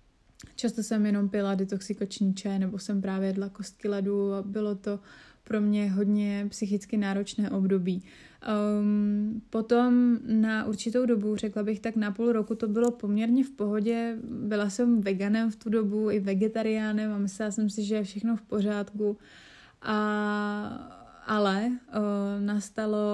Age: 20-39